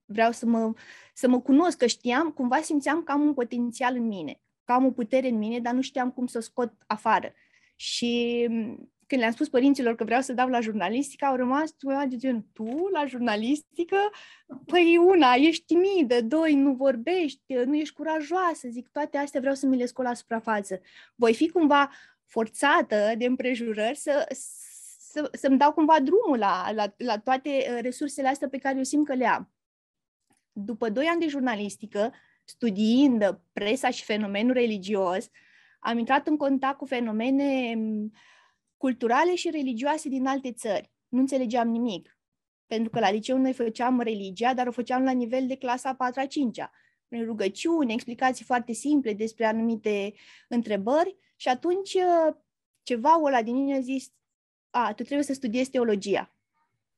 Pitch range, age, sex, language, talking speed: 230-285 Hz, 20-39, female, Romanian, 165 wpm